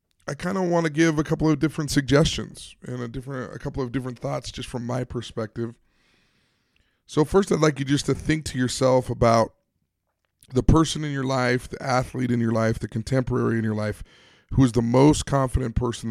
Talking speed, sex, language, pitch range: 205 wpm, male, English, 115-145 Hz